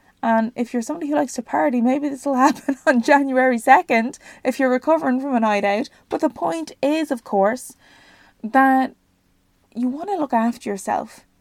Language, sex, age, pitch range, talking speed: English, female, 20-39, 210-260 Hz, 185 wpm